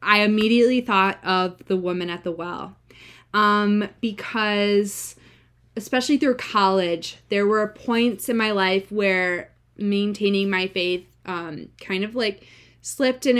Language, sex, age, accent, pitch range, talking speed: English, female, 20-39, American, 185-215 Hz, 135 wpm